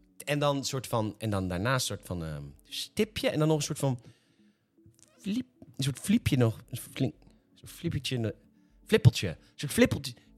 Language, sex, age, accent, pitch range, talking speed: Dutch, male, 40-59, Dutch, 115-175 Hz, 190 wpm